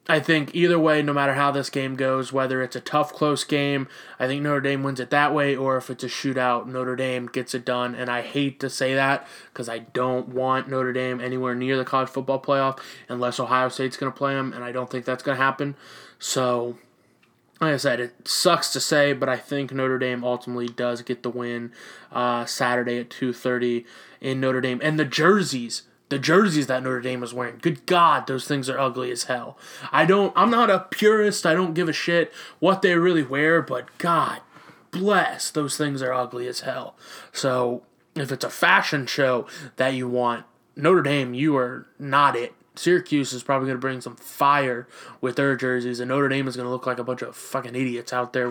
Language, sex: English, male